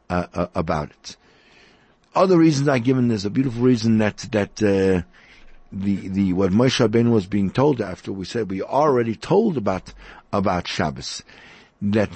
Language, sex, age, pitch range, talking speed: English, male, 60-79, 100-135 Hz, 165 wpm